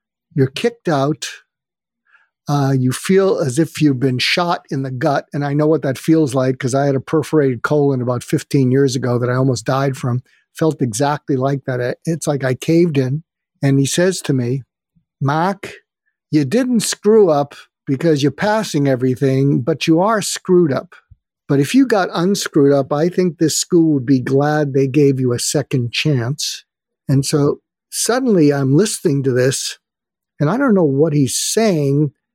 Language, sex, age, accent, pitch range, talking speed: English, male, 50-69, American, 135-175 Hz, 180 wpm